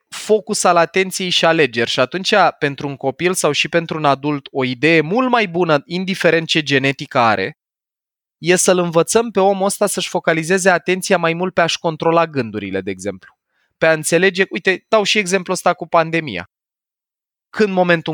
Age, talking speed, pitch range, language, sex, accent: 20-39, 175 wpm, 140-185 Hz, Romanian, male, native